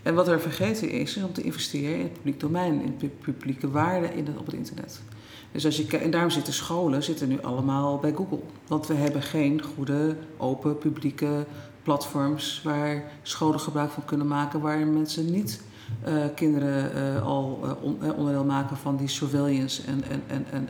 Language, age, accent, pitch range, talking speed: Dutch, 40-59, Dutch, 135-160 Hz, 165 wpm